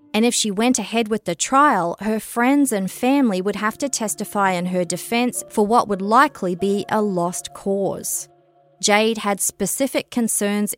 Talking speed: 175 wpm